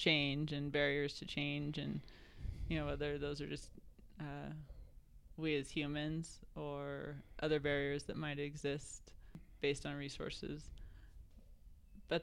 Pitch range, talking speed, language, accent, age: 145-165 Hz, 130 wpm, English, American, 20-39